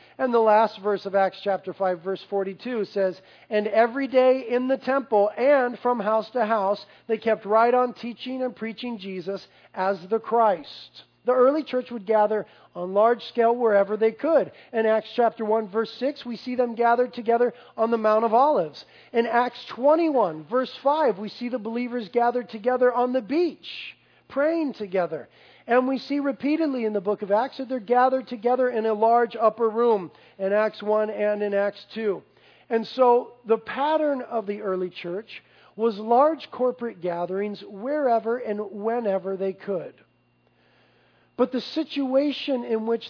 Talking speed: 170 wpm